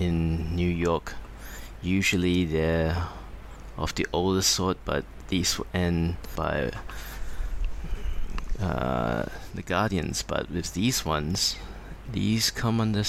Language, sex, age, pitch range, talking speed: English, male, 20-39, 85-95 Hz, 110 wpm